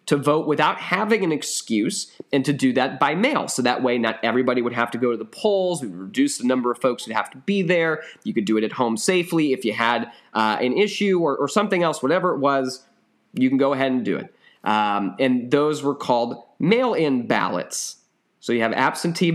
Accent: American